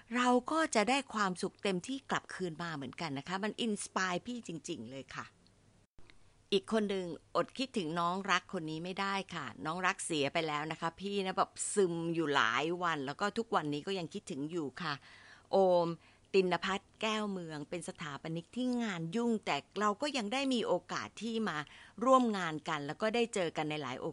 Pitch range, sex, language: 165-230 Hz, female, Thai